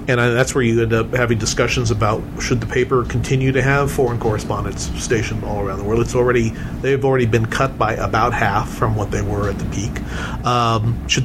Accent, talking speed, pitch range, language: American, 215 wpm, 110-135 Hz, English